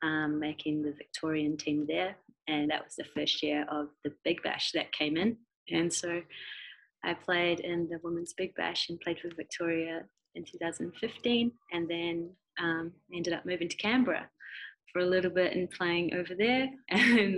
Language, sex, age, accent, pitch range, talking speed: English, female, 20-39, Australian, 150-175 Hz, 175 wpm